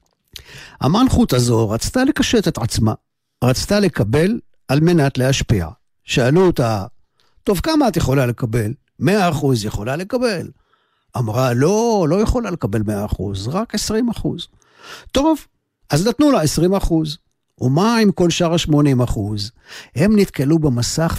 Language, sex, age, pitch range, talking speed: Hebrew, male, 50-69, 115-165 Hz, 115 wpm